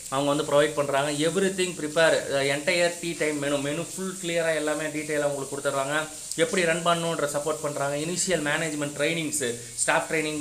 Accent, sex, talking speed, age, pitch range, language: native, male, 160 wpm, 30-49, 145-170 Hz, Tamil